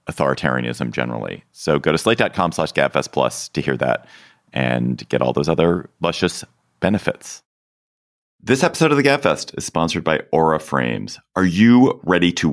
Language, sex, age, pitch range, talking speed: English, male, 30-49, 65-90 Hz, 160 wpm